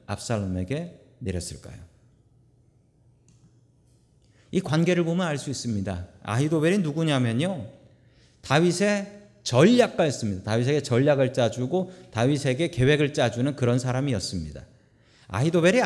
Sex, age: male, 40-59